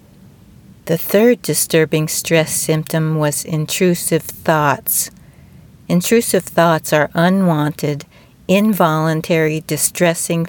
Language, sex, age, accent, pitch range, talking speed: English, female, 40-59, American, 150-180 Hz, 80 wpm